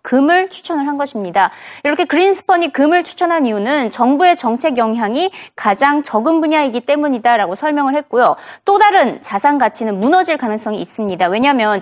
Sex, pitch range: female, 225-335 Hz